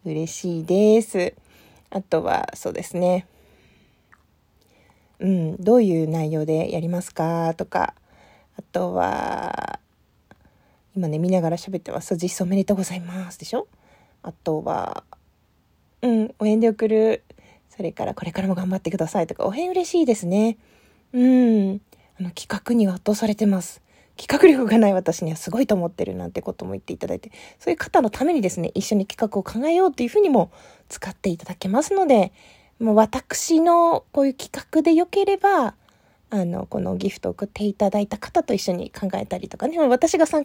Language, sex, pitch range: Japanese, female, 185-245 Hz